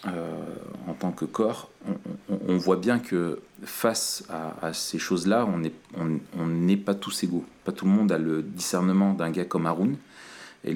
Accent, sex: French, male